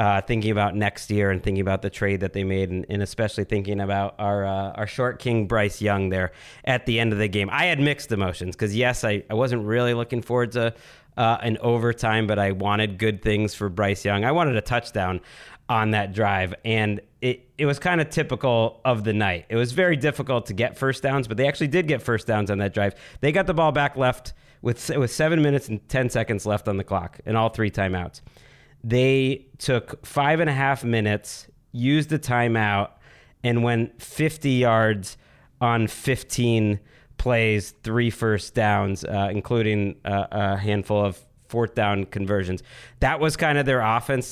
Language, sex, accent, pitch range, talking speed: English, male, American, 105-130 Hz, 200 wpm